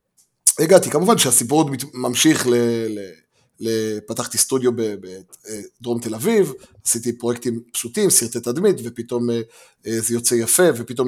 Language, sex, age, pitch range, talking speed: Hebrew, male, 20-39, 115-140 Hz, 115 wpm